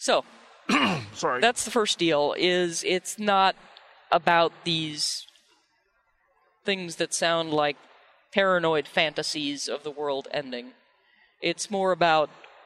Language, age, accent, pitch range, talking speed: English, 40-59, American, 155-190 Hz, 115 wpm